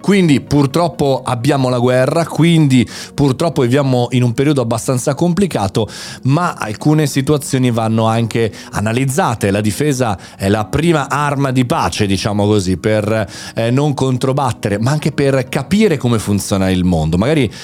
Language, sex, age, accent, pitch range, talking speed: Italian, male, 40-59, native, 110-150 Hz, 145 wpm